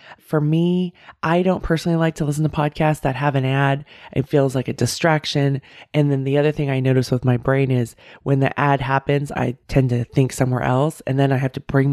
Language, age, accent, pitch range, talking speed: English, 20-39, American, 130-155 Hz, 230 wpm